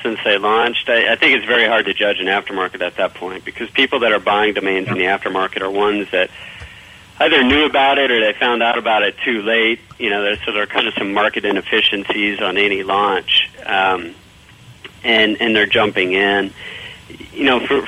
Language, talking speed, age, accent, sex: English, 210 wpm, 40-59, American, male